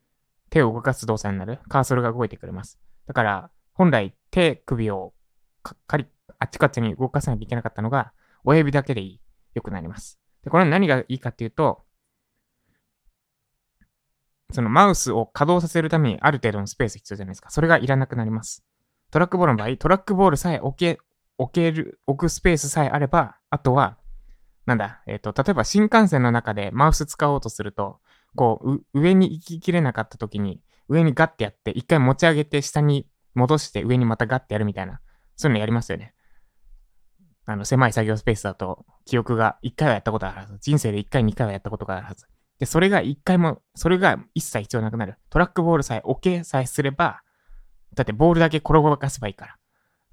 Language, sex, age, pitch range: Japanese, male, 20-39, 110-155 Hz